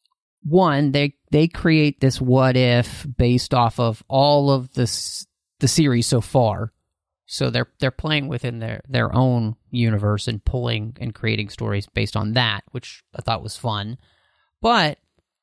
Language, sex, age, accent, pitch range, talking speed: English, male, 30-49, American, 115-155 Hz, 150 wpm